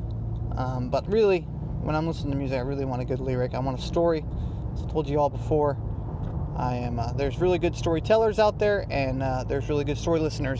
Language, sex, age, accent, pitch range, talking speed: English, male, 20-39, American, 90-145 Hz, 225 wpm